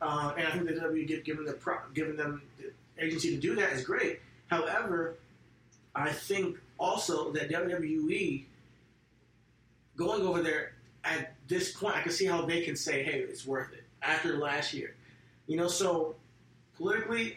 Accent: American